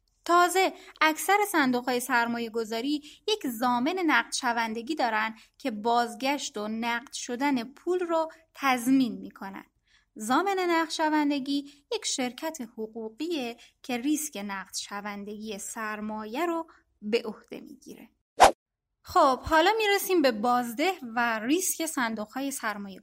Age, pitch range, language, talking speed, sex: 10-29, 225-315 Hz, Persian, 115 wpm, female